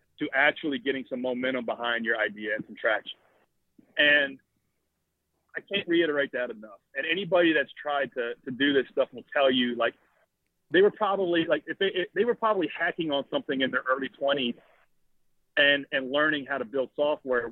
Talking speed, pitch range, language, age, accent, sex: 185 wpm, 140-180 Hz, English, 40-59, American, male